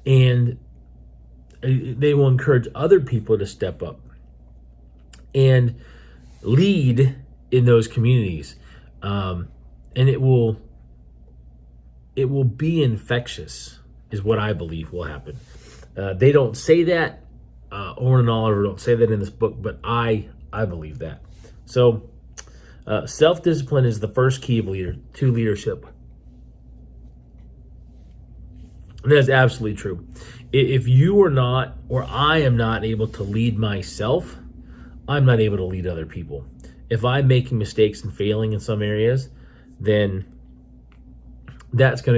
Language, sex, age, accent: English, male, 30-49, American